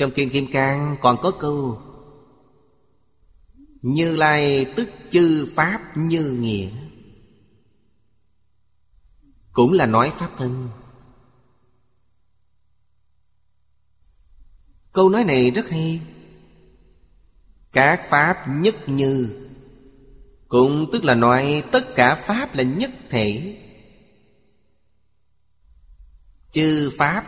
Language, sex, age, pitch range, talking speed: Vietnamese, male, 30-49, 115-145 Hz, 90 wpm